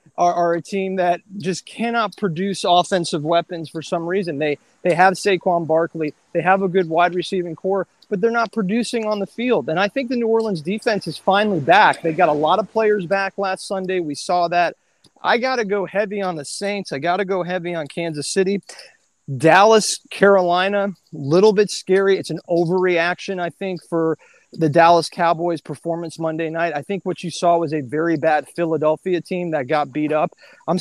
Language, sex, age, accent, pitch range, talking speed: English, male, 30-49, American, 155-195 Hz, 200 wpm